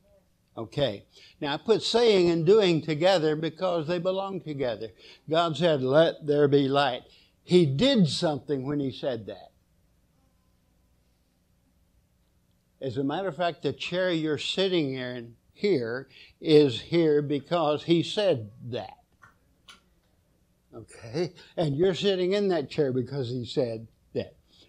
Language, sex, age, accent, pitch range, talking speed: English, male, 60-79, American, 130-170 Hz, 130 wpm